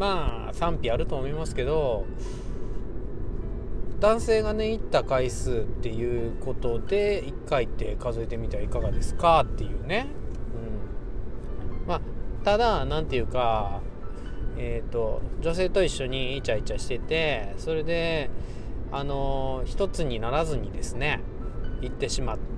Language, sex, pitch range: Japanese, male, 105-160 Hz